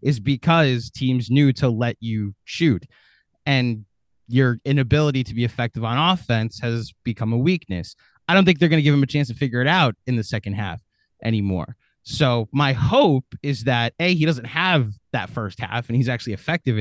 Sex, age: male, 20-39